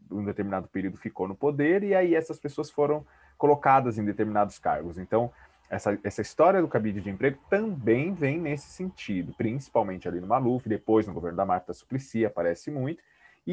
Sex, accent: male, Brazilian